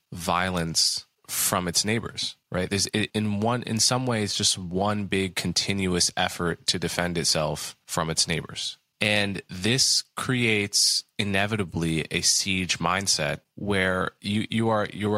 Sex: male